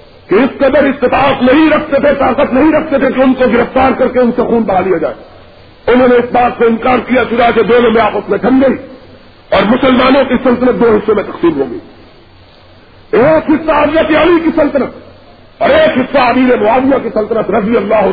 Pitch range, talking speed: 240-315 Hz, 205 wpm